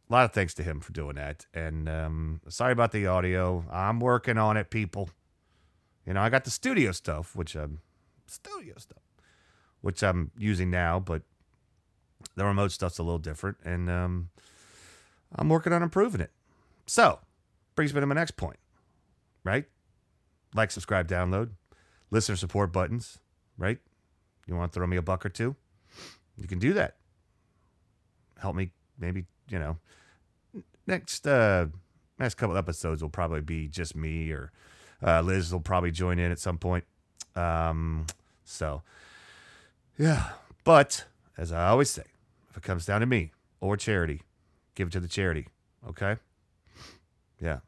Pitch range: 85-105 Hz